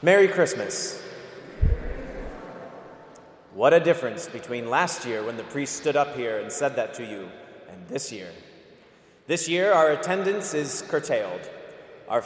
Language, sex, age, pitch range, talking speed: English, male, 30-49, 150-205 Hz, 140 wpm